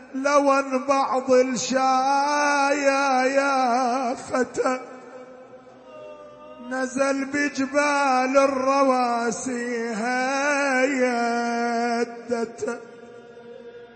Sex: male